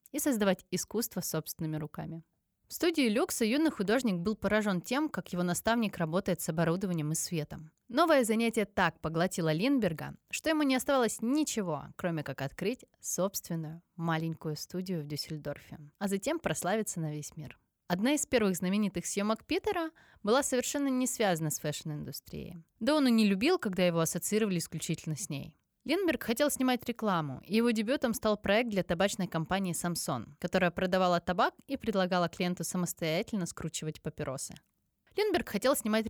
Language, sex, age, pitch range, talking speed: Russian, female, 20-39, 170-235 Hz, 155 wpm